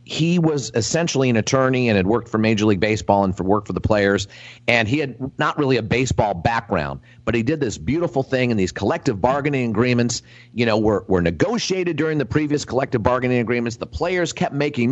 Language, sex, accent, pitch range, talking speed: English, male, American, 115-145 Hz, 210 wpm